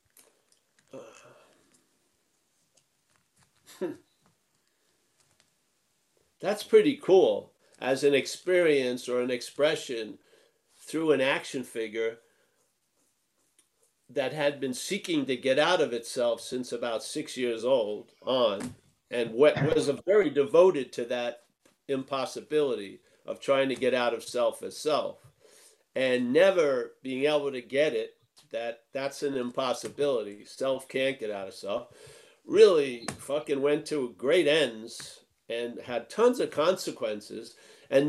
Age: 50-69